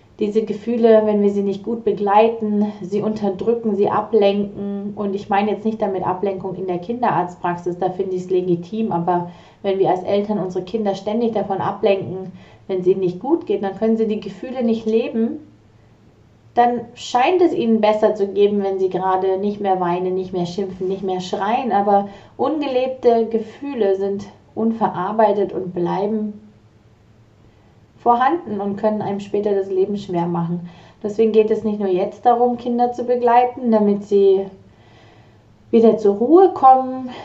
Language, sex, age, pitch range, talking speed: German, female, 30-49, 185-220 Hz, 165 wpm